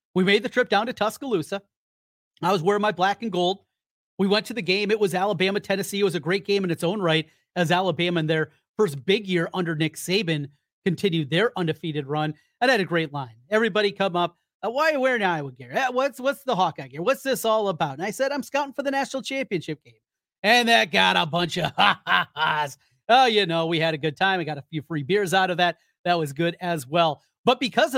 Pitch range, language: 155-205 Hz, English